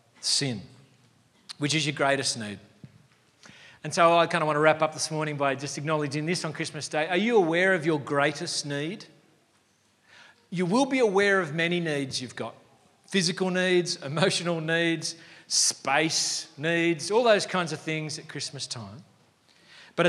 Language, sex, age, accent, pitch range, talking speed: English, male, 40-59, Australian, 130-165 Hz, 165 wpm